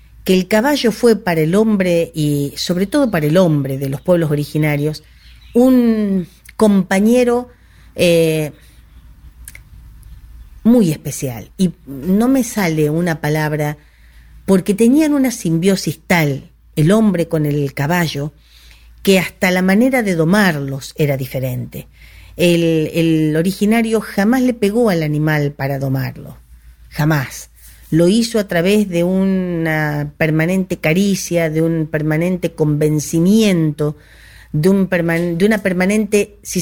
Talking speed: 125 wpm